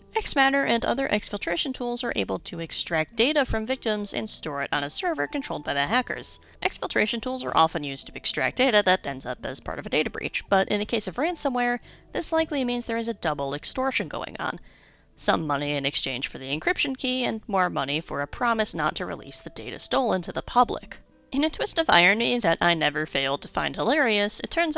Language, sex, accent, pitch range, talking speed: English, female, American, 160-255 Hz, 225 wpm